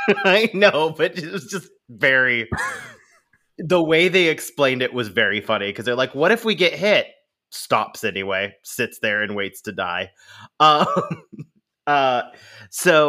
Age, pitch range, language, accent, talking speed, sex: 30-49, 110-150 Hz, English, American, 155 wpm, male